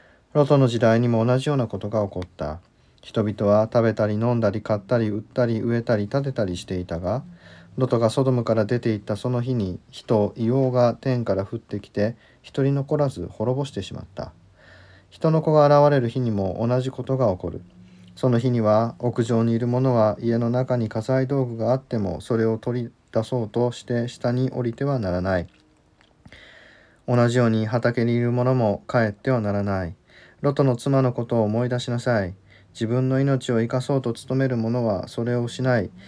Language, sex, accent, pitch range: Japanese, male, native, 105-125 Hz